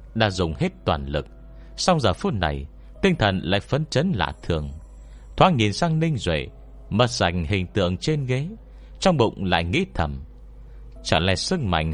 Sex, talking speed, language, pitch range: male, 180 wpm, Vietnamese, 75-120 Hz